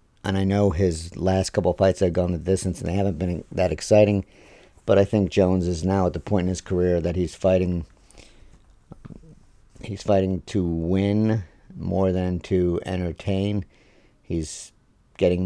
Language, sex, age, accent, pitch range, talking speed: English, male, 50-69, American, 90-100 Hz, 165 wpm